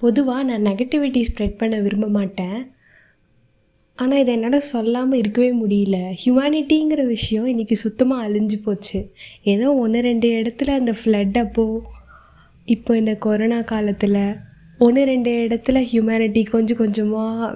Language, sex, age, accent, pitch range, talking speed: Tamil, female, 20-39, native, 205-250 Hz, 120 wpm